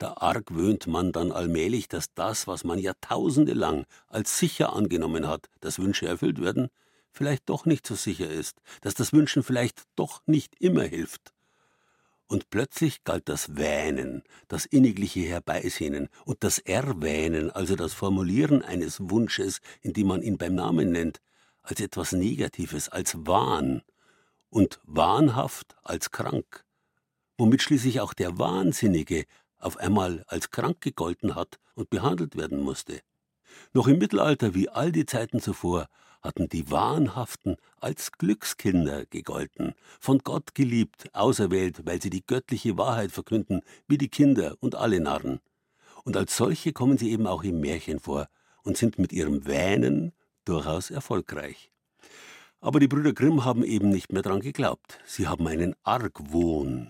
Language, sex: German, male